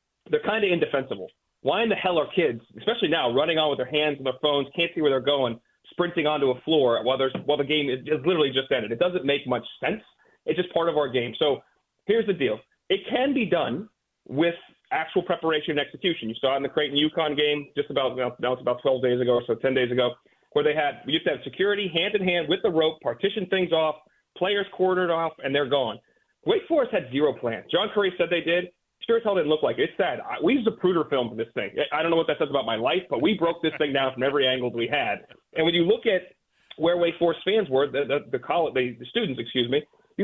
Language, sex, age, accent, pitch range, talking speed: English, male, 30-49, American, 145-195 Hz, 255 wpm